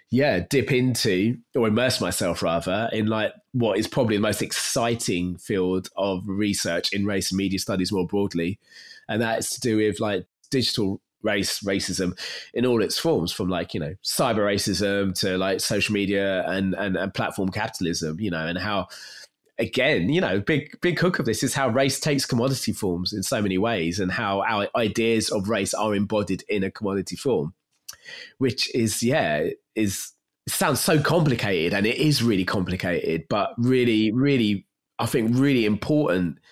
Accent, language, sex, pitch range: British, English, male, 95-120 Hz